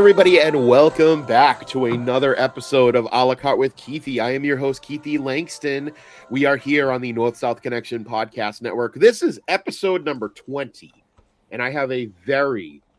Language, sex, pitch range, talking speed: English, male, 110-145 Hz, 175 wpm